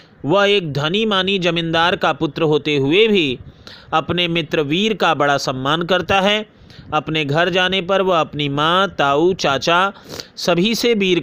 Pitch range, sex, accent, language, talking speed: 160-200 Hz, male, native, Hindi, 160 wpm